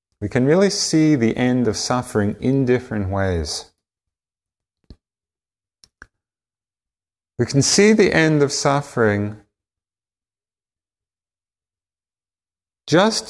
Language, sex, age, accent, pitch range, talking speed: English, male, 40-59, American, 95-130 Hz, 85 wpm